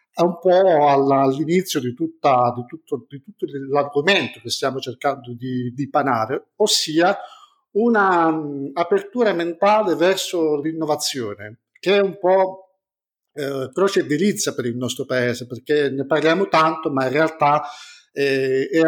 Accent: native